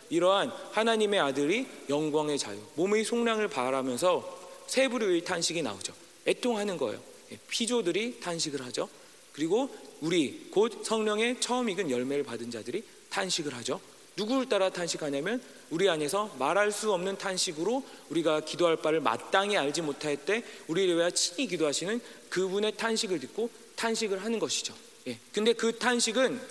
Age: 40-59